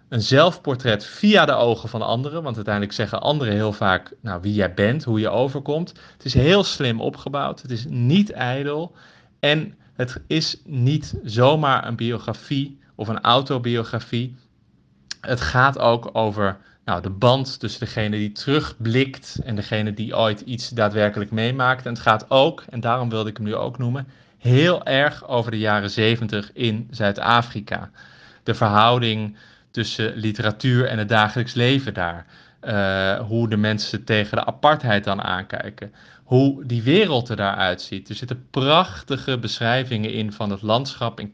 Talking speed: 155 wpm